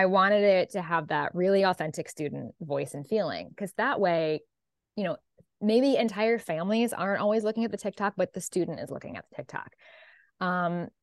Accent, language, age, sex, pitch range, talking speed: American, English, 20-39, female, 155-195 Hz, 190 wpm